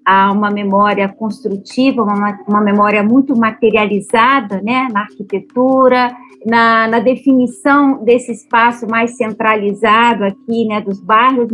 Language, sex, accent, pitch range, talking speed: Portuguese, female, Brazilian, 210-245 Hz, 120 wpm